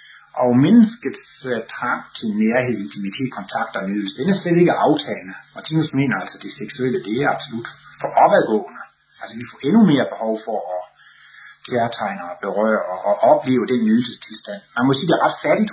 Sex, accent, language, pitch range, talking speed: male, native, Danish, 115-160 Hz, 180 wpm